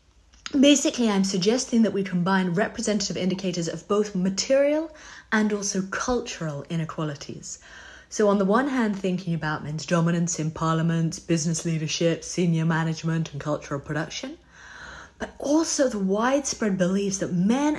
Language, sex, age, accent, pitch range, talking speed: English, female, 30-49, British, 165-230 Hz, 135 wpm